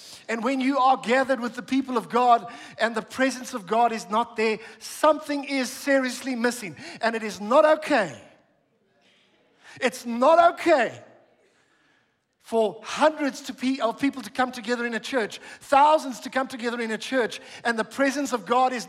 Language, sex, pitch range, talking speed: English, male, 220-270 Hz, 170 wpm